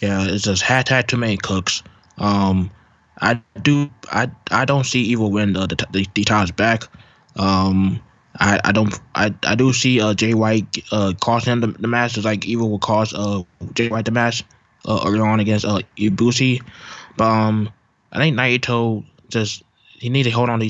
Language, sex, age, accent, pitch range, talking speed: English, male, 20-39, American, 100-115 Hz, 195 wpm